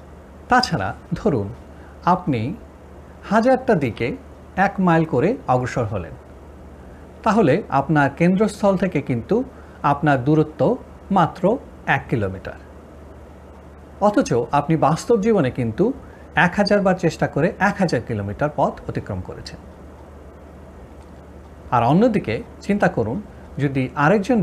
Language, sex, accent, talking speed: Bengali, male, native, 100 wpm